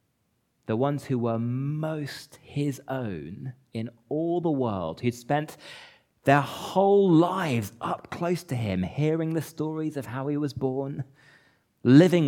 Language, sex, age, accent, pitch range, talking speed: English, male, 30-49, British, 110-160 Hz, 140 wpm